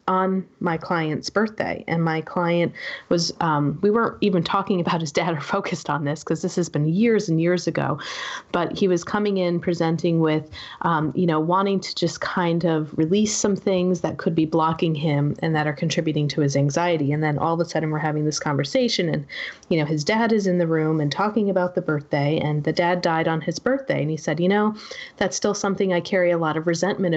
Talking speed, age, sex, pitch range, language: 225 wpm, 30-49, female, 160-195 Hz, English